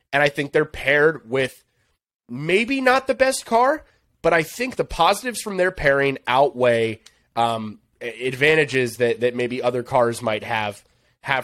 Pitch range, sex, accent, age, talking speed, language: 120-160 Hz, male, American, 30-49, 155 wpm, English